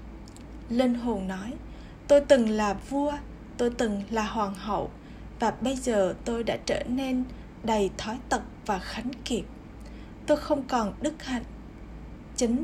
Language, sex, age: Vietnamese, female, 10-29